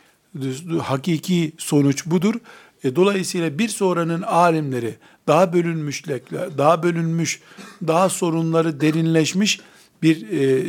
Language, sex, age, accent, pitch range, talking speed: Turkish, male, 60-79, native, 135-175 Hz, 100 wpm